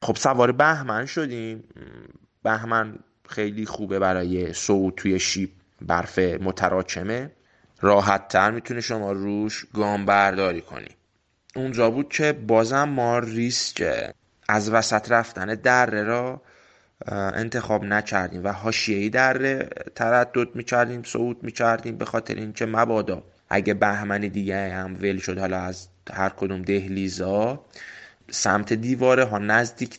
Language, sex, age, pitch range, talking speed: Persian, male, 20-39, 100-115 Hz, 120 wpm